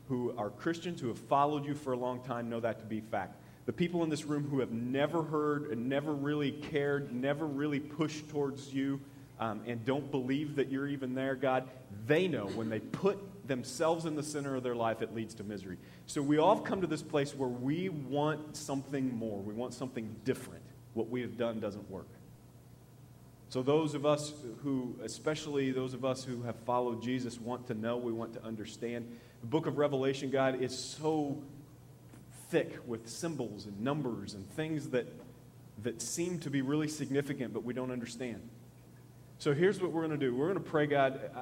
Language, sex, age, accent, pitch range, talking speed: English, male, 30-49, American, 120-145 Hz, 200 wpm